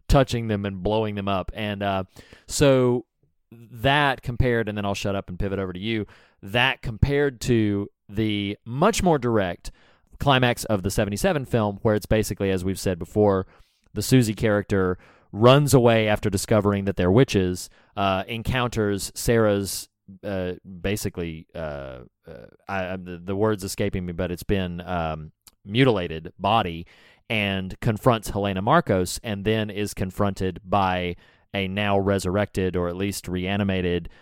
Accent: American